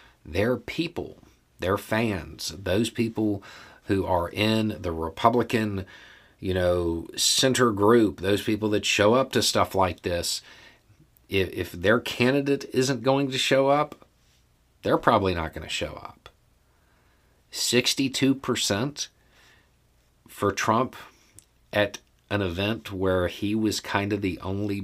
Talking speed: 130 wpm